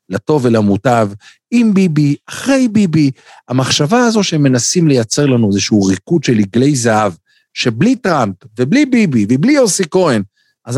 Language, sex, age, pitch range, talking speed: Hebrew, male, 50-69, 105-150 Hz, 140 wpm